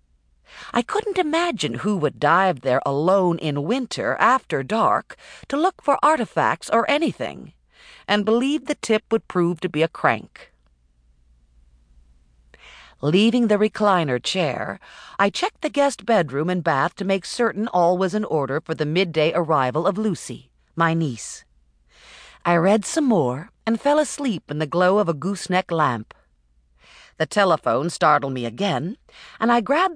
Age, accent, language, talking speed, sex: 50-69, American, English, 150 wpm, female